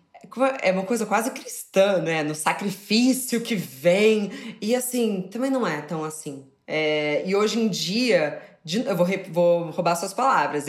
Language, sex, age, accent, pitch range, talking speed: Portuguese, female, 20-39, Brazilian, 165-220 Hz, 150 wpm